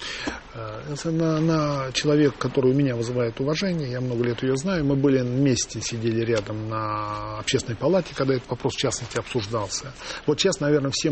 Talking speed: 165 wpm